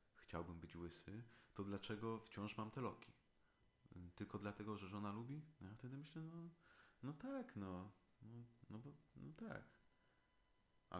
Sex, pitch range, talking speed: male, 90-115 Hz, 155 wpm